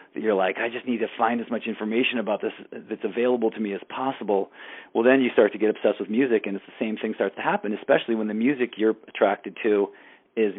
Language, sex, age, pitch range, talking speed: English, male, 40-59, 100-115 Hz, 245 wpm